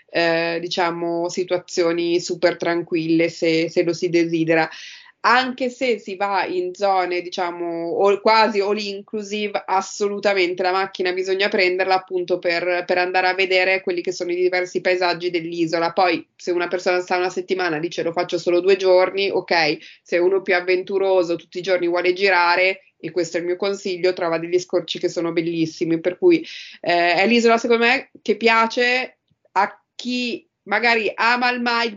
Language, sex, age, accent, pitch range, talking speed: Italian, female, 20-39, native, 175-200 Hz, 165 wpm